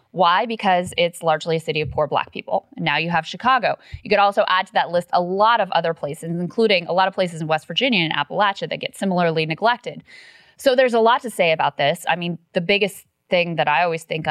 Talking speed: 240 wpm